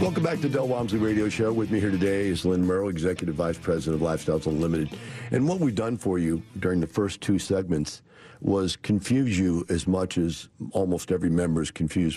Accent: American